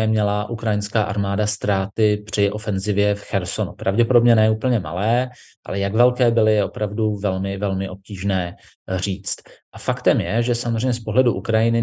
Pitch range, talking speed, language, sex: 105-120 Hz, 150 wpm, Slovak, male